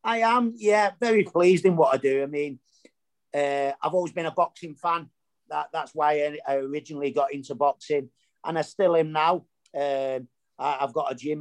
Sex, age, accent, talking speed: male, 40-59, British, 190 wpm